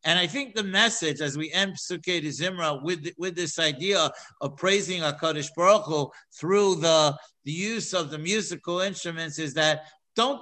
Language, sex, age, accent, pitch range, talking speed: English, male, 50-69, American, 165-210 Hz, 175 wpm